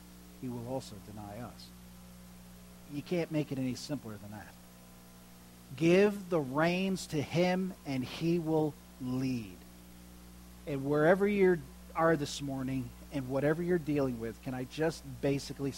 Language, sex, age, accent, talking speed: English, male, 50-69, American, 140 wpm